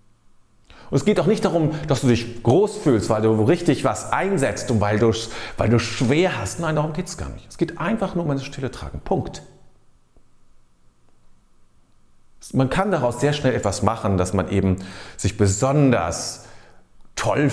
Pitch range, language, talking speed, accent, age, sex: 90-145 Hz, German, 180 wpm, German, 40-59, male